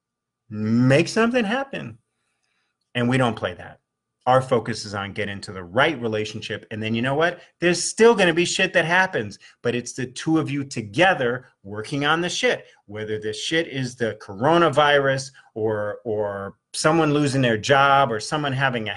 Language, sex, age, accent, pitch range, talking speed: English, male, 30-49, American, 115-170 Hz, 175 wpm